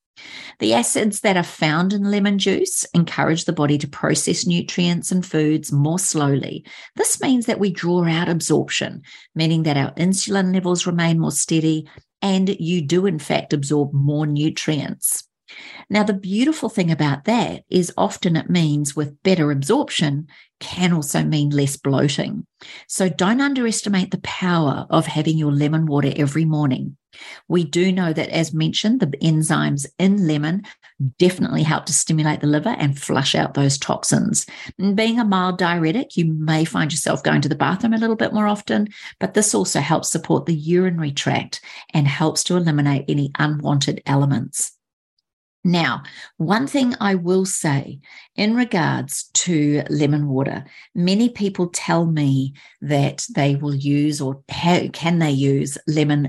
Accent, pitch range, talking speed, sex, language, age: Australian, 145-190 Hz, 160 wpm, female, English, 50-69